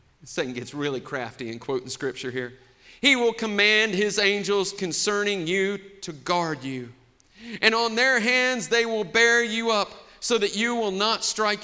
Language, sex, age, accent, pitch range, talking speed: English, male, 40-59, American, 120-190 Hz, 170 wpm